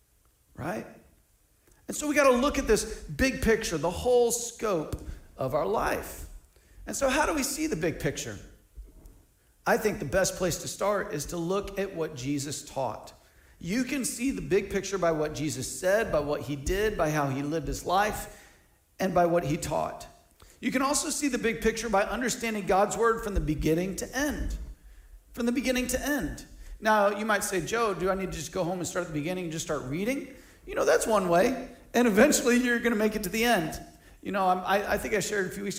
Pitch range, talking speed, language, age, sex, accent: 170-255 Hz, 220 wpm, English, 40-59, male, American